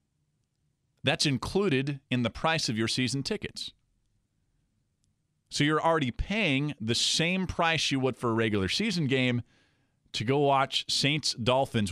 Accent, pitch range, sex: American, 115-150 Hz, male